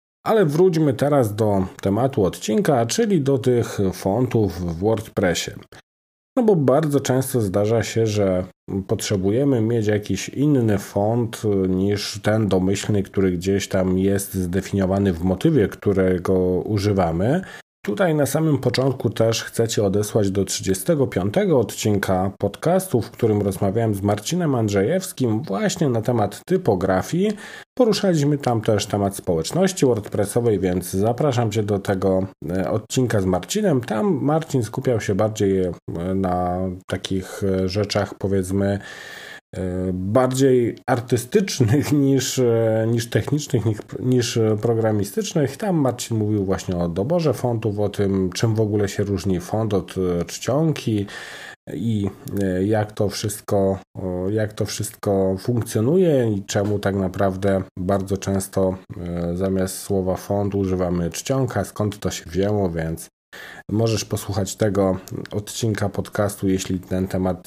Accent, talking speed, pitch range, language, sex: native, 125 wpm, 95-125 Hz, Polish, male